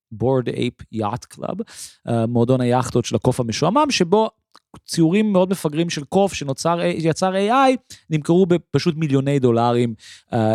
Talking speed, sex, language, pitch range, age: 130 wpm, male, Hebrew, 125-185 Hz, 30-49